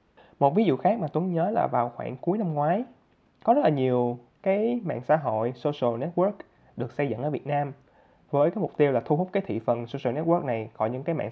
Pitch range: 120-160 Hz